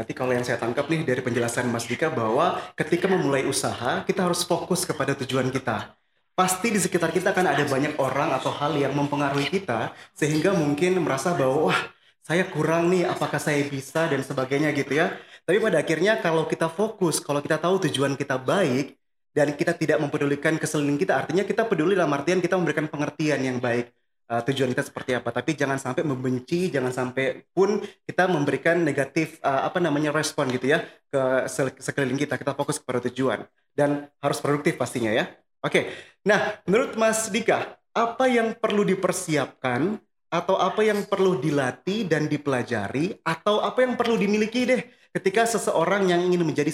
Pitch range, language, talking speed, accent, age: 135-180 Hz, Indonesian, 175 wpm, native, 20-39